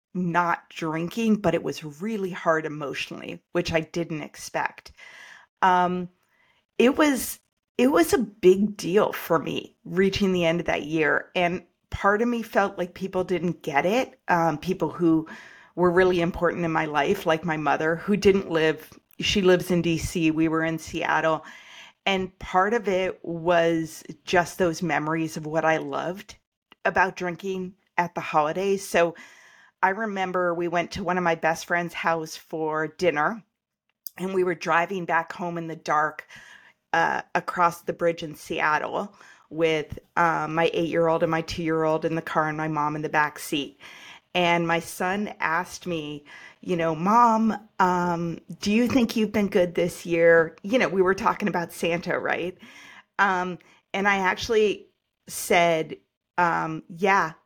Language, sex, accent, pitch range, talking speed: English, female, American, 165-195 Hz, 165 wpm